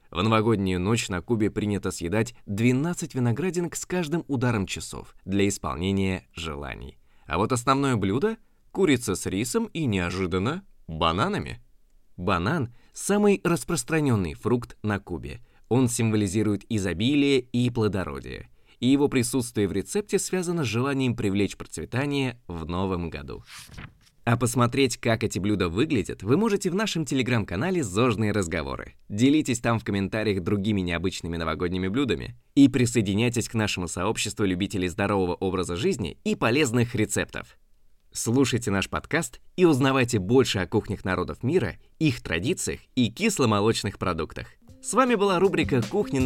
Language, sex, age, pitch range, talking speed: Russian, male, 20-39, 95-135 Hz, 135 wpm